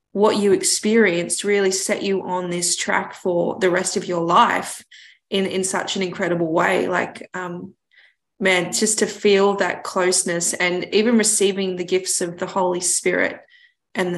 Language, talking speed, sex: English, 165 wpm, female